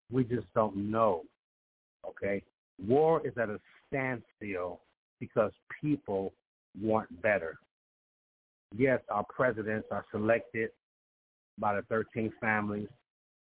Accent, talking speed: American, 105 wpm